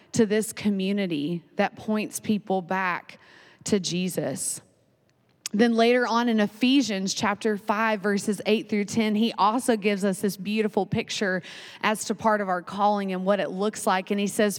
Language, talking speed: English, 170 wpm